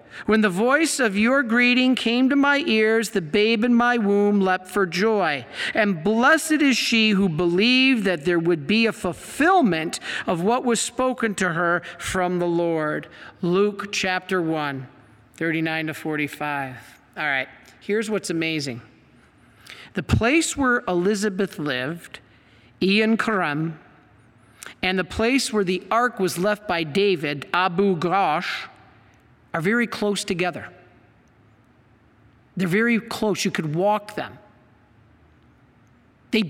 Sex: male